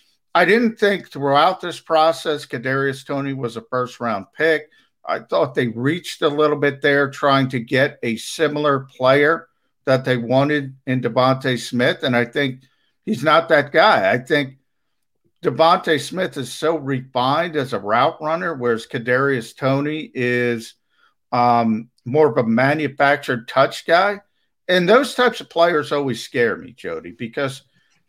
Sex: male